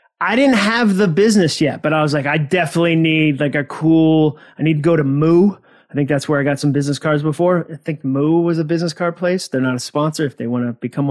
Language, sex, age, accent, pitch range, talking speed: English, male, 30-49, American, 130-175 Hz, 265 wpm